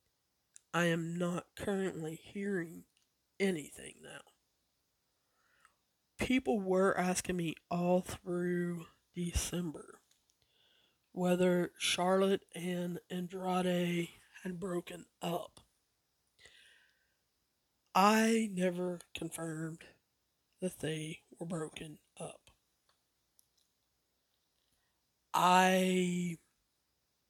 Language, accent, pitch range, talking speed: English, American, 170-190 Hz, 65 wpm